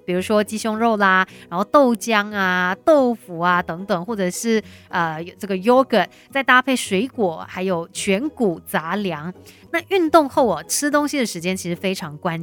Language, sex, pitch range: Chinese, female, 190-280 Hz